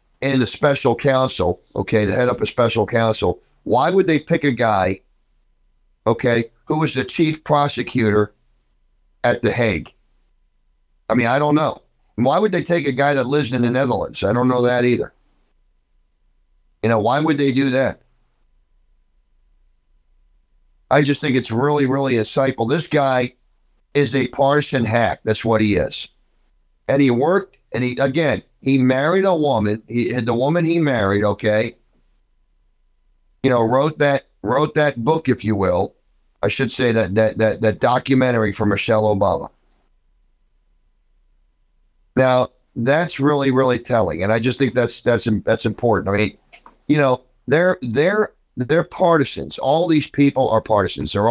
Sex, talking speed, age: male, 160 wpm, 50-69